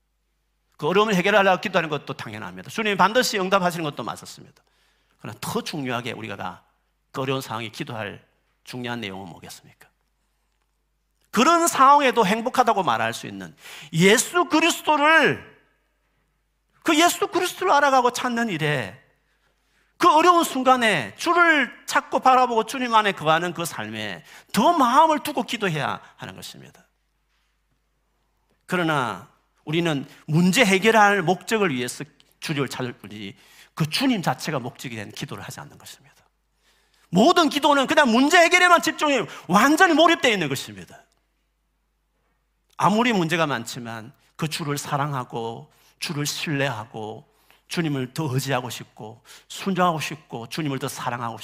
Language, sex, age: Korean, male, 40-59